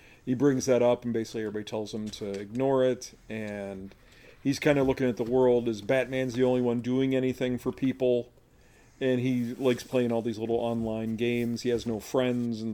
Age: 40-59